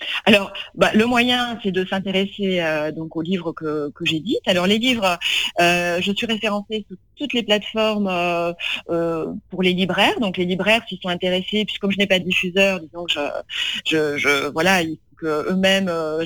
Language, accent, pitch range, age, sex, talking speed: French, French, 165-200 Hz, 30-49, female, 190 wpm